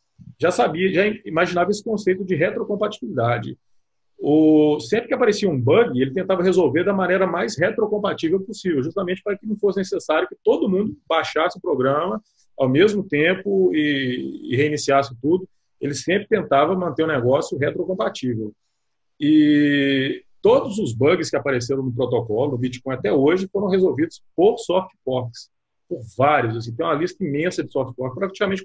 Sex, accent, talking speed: male, Brazilian, 155 wpm